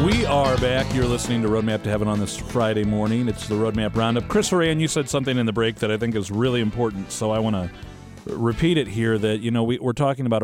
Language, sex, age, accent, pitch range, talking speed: English, male, 40-59, American, 100-125 Hz, 255 wpm